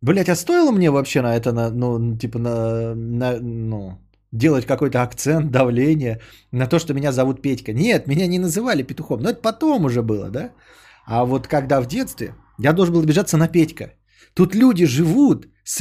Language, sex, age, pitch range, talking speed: Bulgarian, male, 20-39, 115-170 Hz, 185 wpm